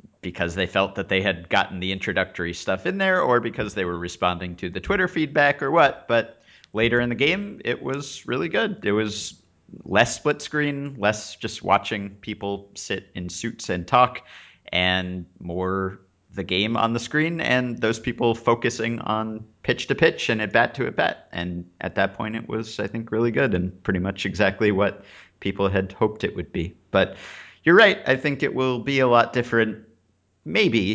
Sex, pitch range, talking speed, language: male, 90-115 Hz, 195 wpm, English